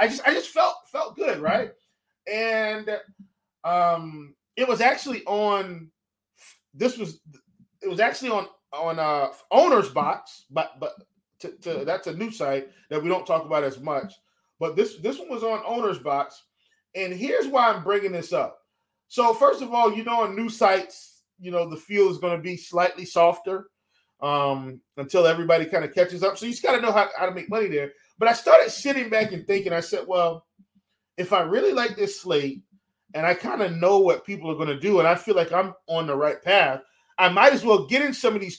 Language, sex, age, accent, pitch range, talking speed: English, male, 20-39, American, 170-225 Hz, 210 wpm